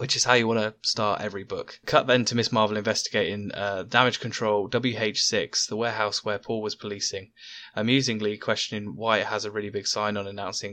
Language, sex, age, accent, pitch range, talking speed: English, male, 10-29, British, 100-115 Hz, 200 wpm